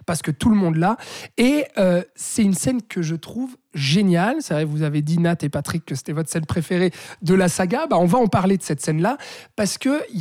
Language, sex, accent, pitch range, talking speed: French, male, French, 165-220 Hz, 245 wpm